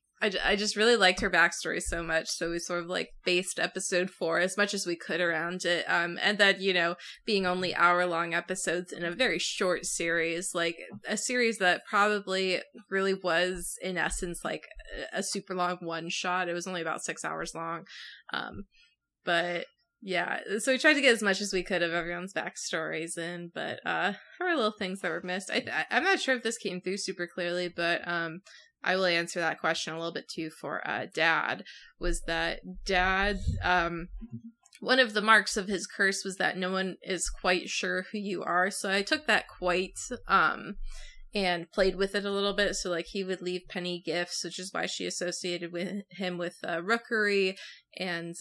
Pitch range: 170-195 Hz